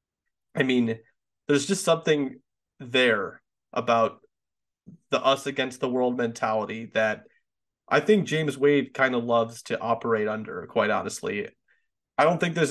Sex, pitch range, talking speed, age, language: male, 120-145 Hz, 130 wpm, 30-49, English